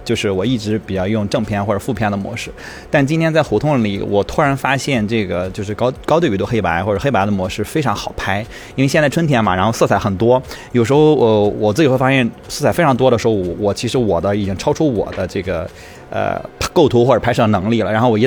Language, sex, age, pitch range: Chinese, male, 20-39, 100-130 Hz